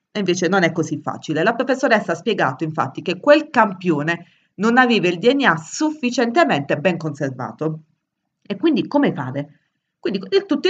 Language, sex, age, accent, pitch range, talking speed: Italian, female, 30-49, native, 160-210 Hz, 145 wpm